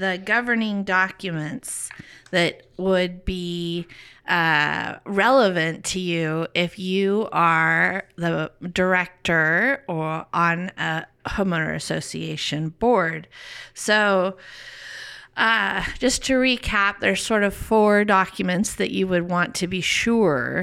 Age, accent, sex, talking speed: 30-49, American, female, 110 wpm